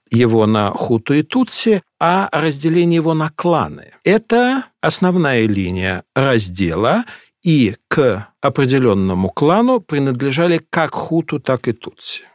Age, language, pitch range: 60-79, Russian, 125-180 Hz